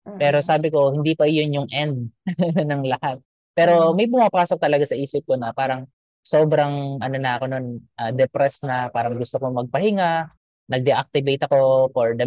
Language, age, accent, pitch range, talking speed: English, 20-39, Filipino, 125-150 Hz, 170 wpm